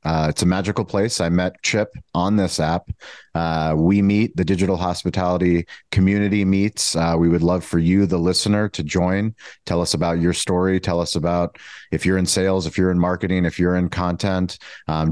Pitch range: 85-95 Hz